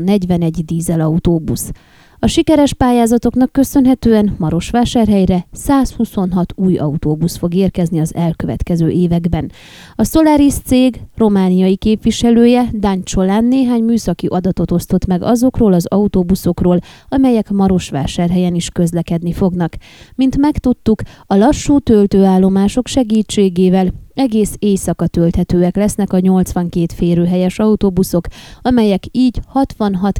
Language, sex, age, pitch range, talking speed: Hungarian, female, 20-39, 175-235 Hz, 100 wpm